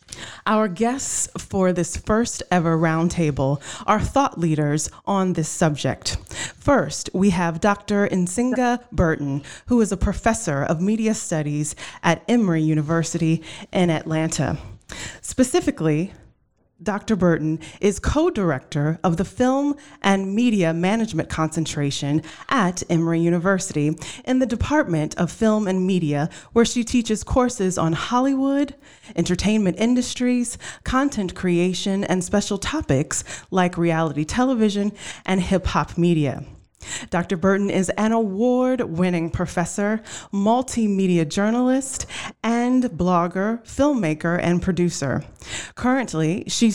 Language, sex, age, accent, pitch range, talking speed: English, female, 30-49, American, 165-230 Hz, 110 wpm